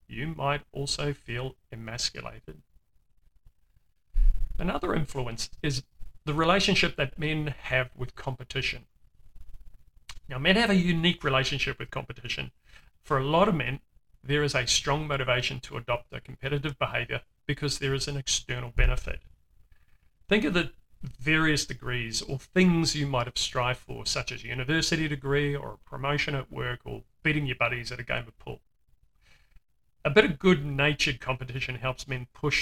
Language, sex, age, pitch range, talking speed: English, male, 40-59, 120-150 Hz, 155 wpm